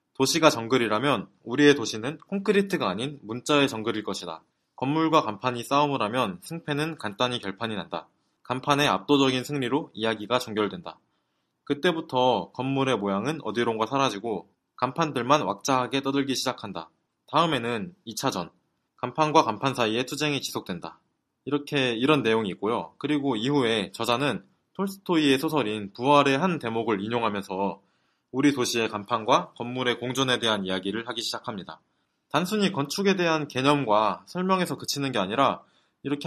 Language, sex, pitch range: Korean, male, 110-150 Hz